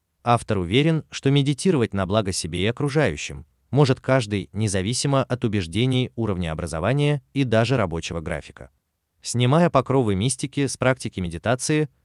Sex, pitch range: male, 90-130 Hz